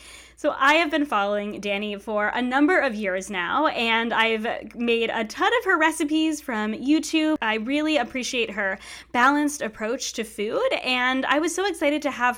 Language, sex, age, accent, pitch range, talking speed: English, female, 20-39, American, 225-295 Hz, 180 wpm